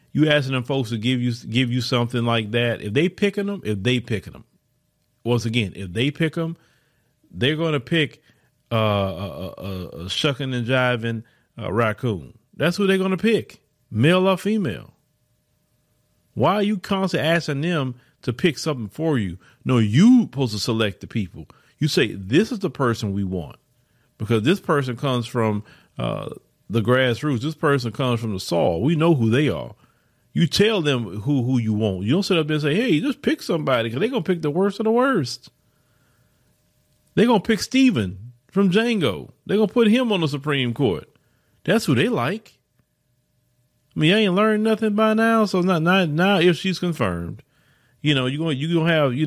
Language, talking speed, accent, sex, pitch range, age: English, 200 wpm, American, male, 120-170 Hz, 40-59